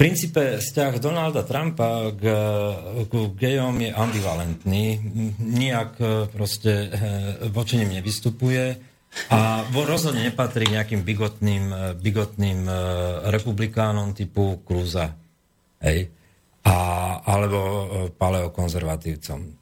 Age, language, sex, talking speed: 40-59, Slovak, male, 75 wpm